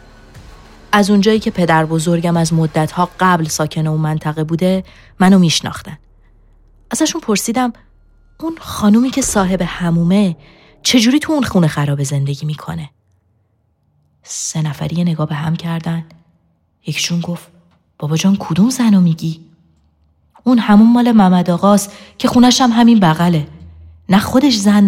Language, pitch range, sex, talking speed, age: Persian, 145-185 Hz, female, 130 wpm, 30-49